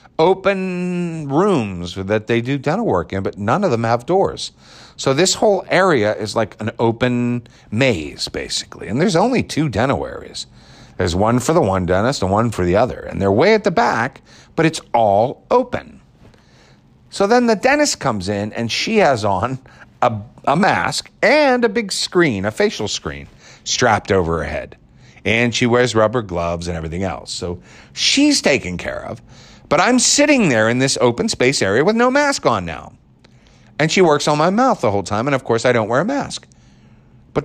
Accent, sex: American, male